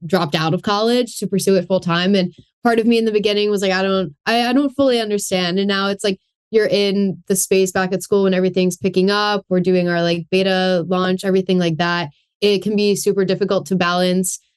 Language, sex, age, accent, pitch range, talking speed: English, female, 10-29, American, 180-200 Hz, 230 wpm